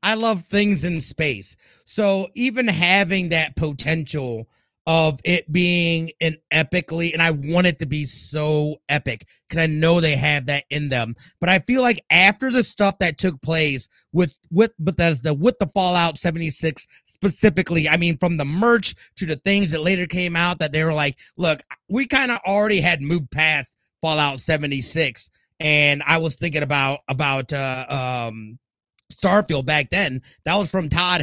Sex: male